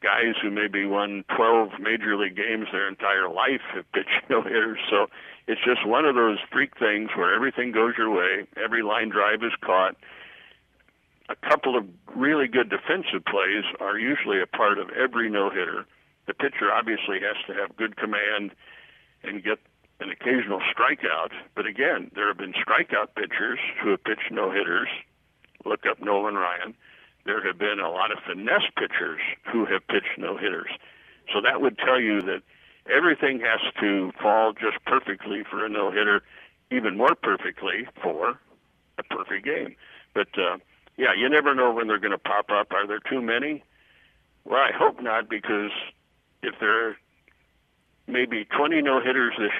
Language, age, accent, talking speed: English, 60-79, American, 170 wpm